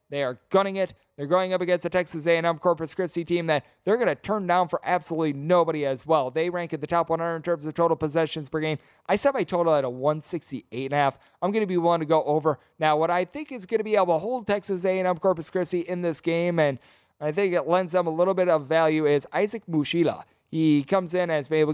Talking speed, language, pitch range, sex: 255 wpm, English, 150-175 Hz, male